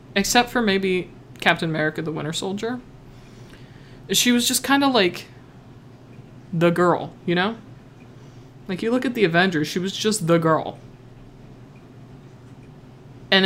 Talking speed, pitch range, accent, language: 135 wpm, 125-165 Hz, American, English